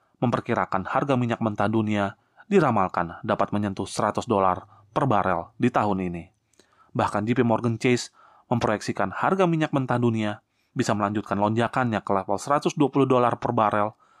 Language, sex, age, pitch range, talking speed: Indonesian, male, 30-49, 105-130 Hz, 140 wpm